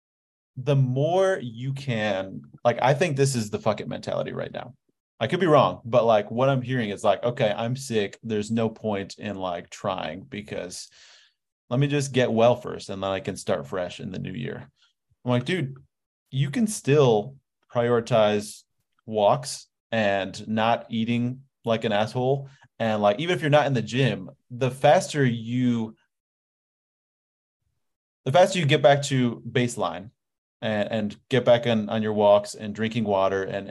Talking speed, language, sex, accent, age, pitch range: 175 wpm, English, male, American, 30-49, 105-135 Hz